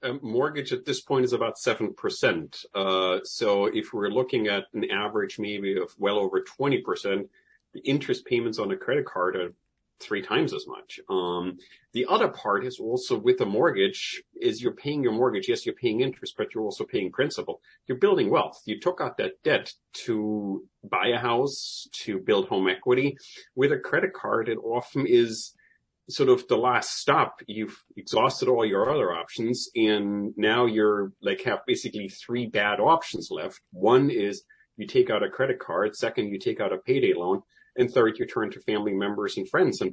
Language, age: English, 40-59